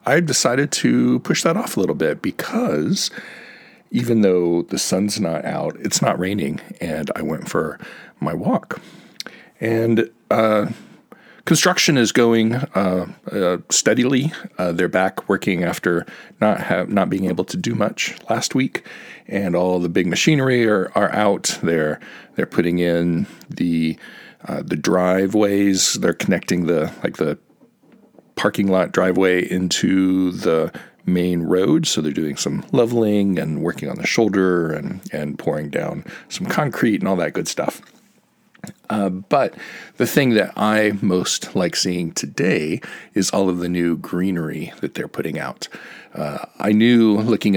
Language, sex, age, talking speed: English, male, 40-59, 155 wpm